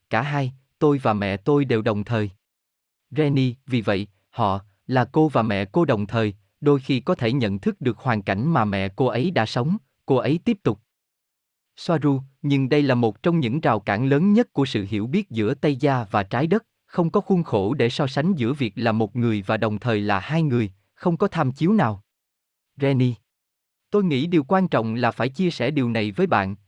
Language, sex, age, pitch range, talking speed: Vietnamese, male, 20-39, 110-160 Hz, 220 wpm